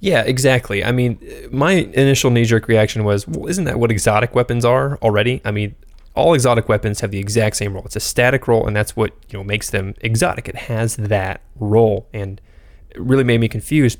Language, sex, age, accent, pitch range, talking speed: English, male, 20-39, American, 100-125 Hz, 210 wpm